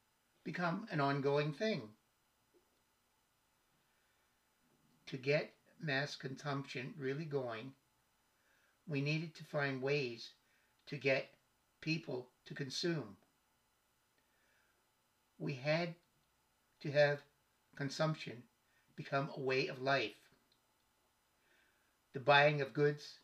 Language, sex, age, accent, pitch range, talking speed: English, male, 60-79, American, 130-160 Hz, 90 wpm